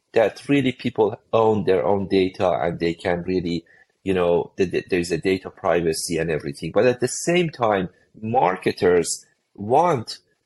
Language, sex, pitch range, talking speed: English, male, 90-125 Hz, 150 wpm